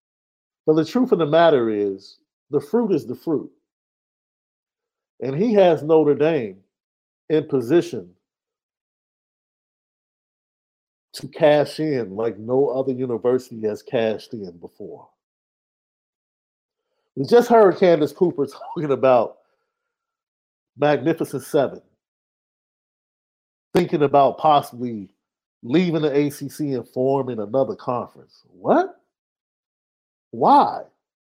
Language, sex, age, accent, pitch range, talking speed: English, male, 50-69, American, 125-205 Hz, 100 wpm